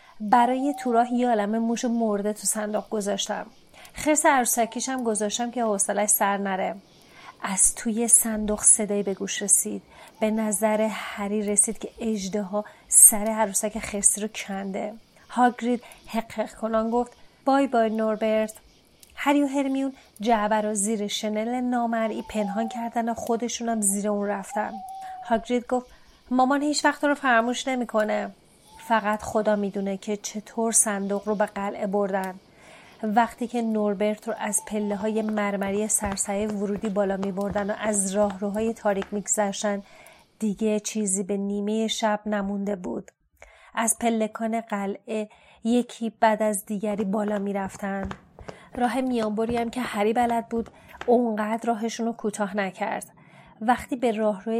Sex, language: female, Persian